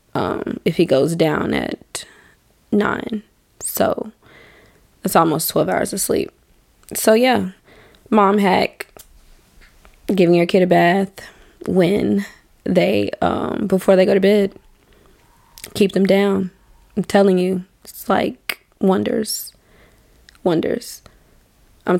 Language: English